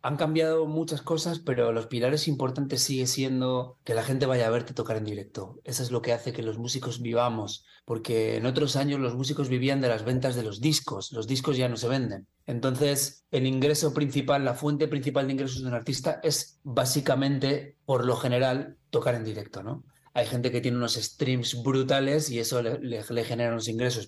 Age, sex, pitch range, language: 30-49, male, 120-150 Hz, Spanish